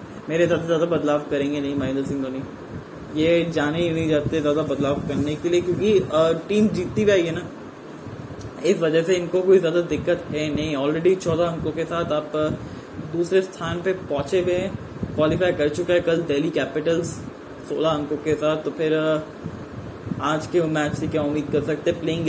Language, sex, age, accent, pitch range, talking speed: Hindi, male, 20-39, native, 150-170 Hz, 180 wpm